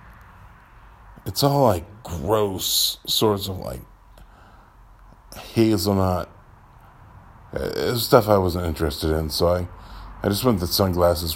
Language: English